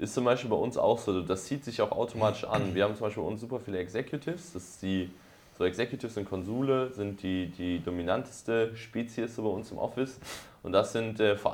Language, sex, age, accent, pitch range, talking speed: German, male, 20-39, German, 95-115 Hz, 220 wpm